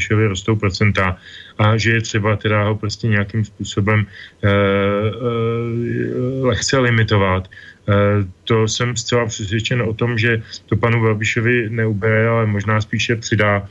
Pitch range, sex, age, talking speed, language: 100-110 Hz, male, 30-49, 130 wpm, Slovak